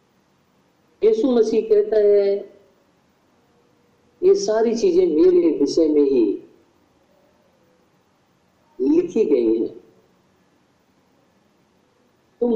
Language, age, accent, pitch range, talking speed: Hindi, 50-69, native, 240-395 Hz, 70 wpm